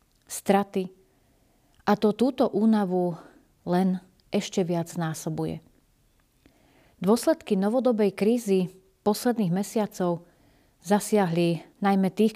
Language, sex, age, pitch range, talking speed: Slovak, female, 40-59, 175-215 Hz, 85 wpm